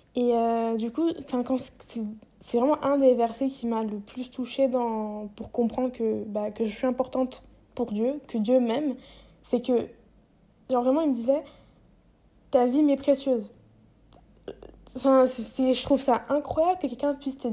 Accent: French